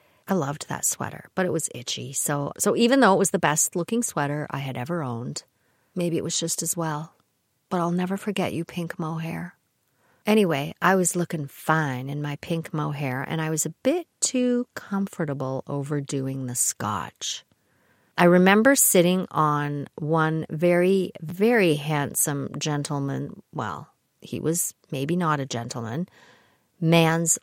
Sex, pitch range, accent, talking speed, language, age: female, 145-190 Hz, American, 150 wpm, English, 40-59